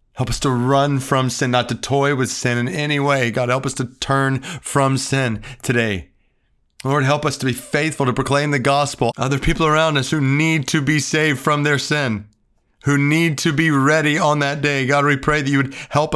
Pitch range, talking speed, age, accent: 125-145 Hz, 220 wpm, 30-49, American